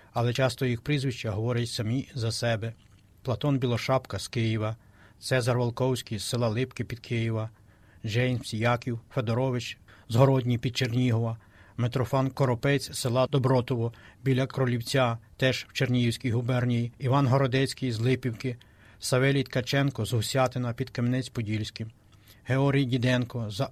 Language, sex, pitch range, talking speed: Ukrainian, male, 115-130 Hz, 125 wpm